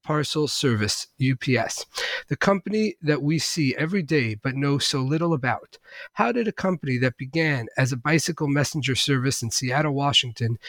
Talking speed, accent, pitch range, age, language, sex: 165 wpm, American, 130-160 Hz, 40-59, English, male